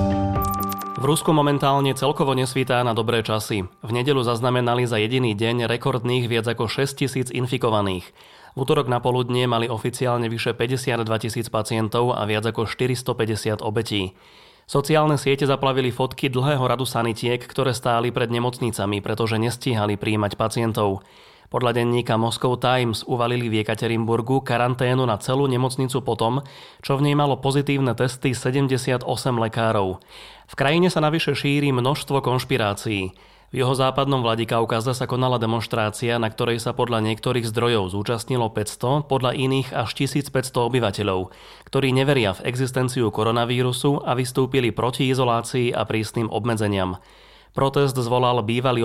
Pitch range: 115-130 Hz